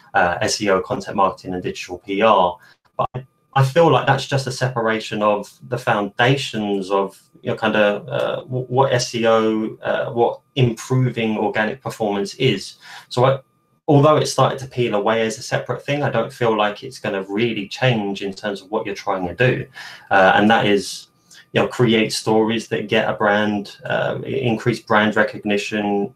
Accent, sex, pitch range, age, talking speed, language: British, male, 100-125 Hz, 20-39, 165 wpm, English